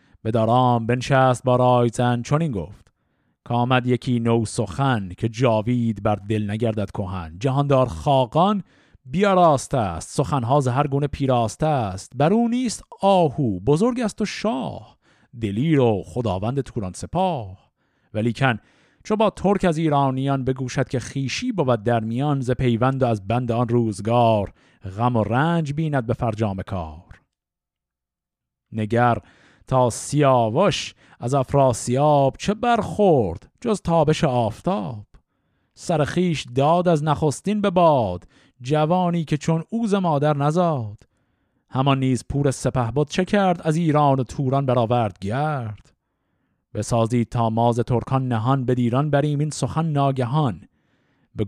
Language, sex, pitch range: Persian, male, 115-150 Hz